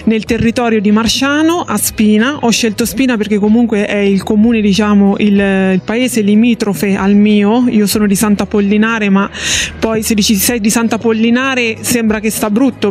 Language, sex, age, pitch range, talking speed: Italian, female, 20-39, 210-235 Hz, 175 wpm